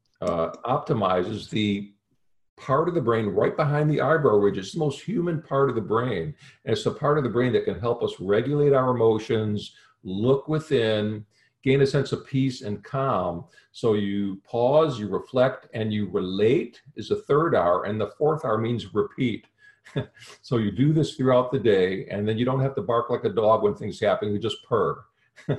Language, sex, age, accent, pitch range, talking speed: English, male, 50-69, American, 105-135 Hz, 195 wpm